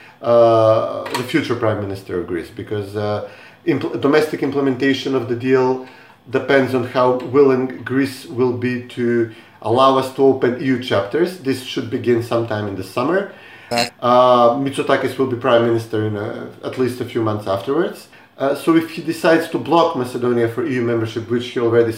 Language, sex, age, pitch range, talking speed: English, male, 30-49, 115-140 Hz, 170 wpm